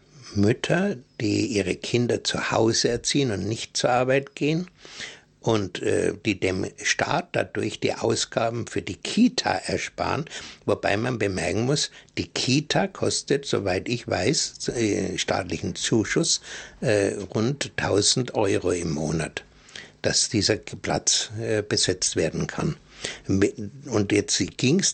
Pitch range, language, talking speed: 100-135 Hz, German, 130 wpm